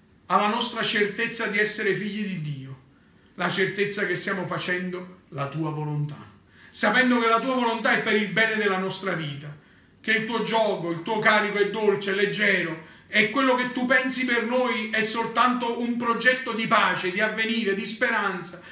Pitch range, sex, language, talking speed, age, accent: 180-245 Hz, male, Italian, 180 wpm, 40-59, native